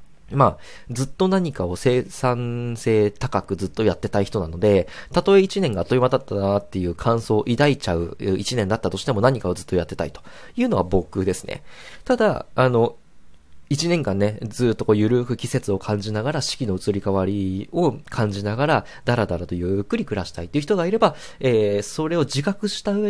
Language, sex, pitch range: Japanese, male, 95-150 Hz